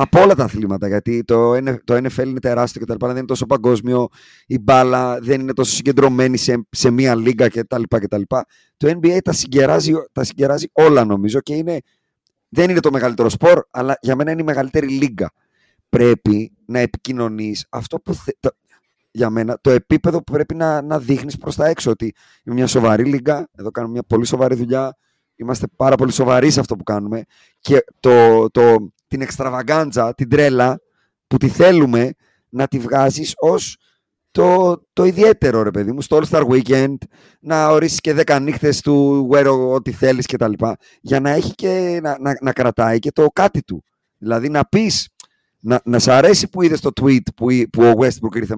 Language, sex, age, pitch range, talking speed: Greek, male, 30-49, 115-145 Hz, 185 wpm